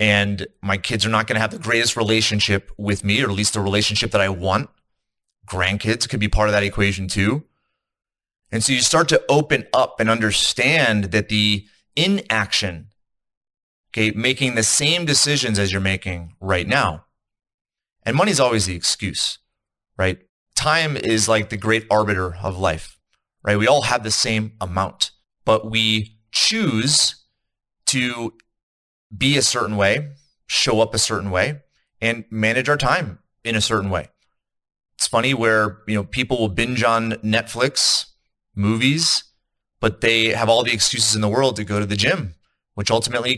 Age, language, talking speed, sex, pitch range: 30-49, English, 165 wpm, male, 100-125 Hz